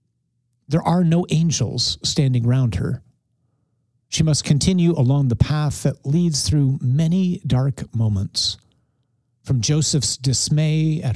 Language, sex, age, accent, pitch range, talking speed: English, male, 50-69, American, 120-155 Hz, 125 wpm